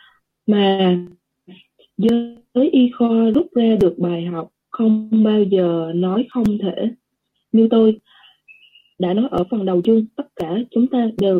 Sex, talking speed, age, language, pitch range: female, 145 wpm, 20-39, Vietnamese, 185-240 Hz